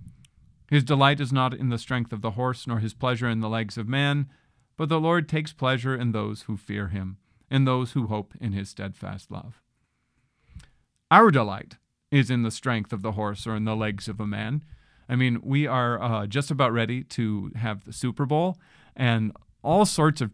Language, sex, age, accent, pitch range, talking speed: English, male, 40-59, American, 110-140 Hz, 205 wpm